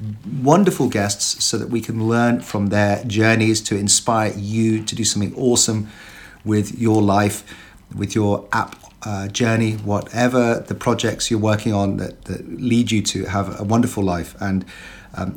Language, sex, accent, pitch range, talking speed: English, male, British, 100-120 Hz, 165 wpm